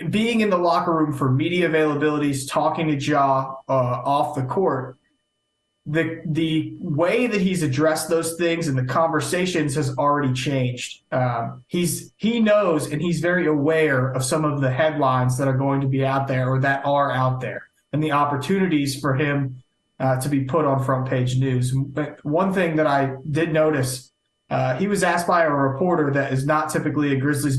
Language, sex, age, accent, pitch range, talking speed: English, male, 30-49, American, 135-160 Hz, 190 wpm